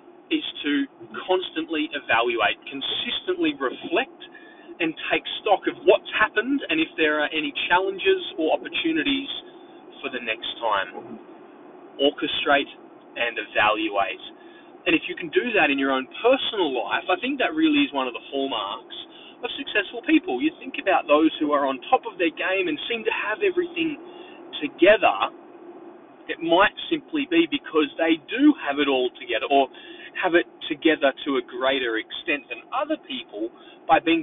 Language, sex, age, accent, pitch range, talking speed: English, male, 20-39, Australian, 255-355 Hz, 160 wpm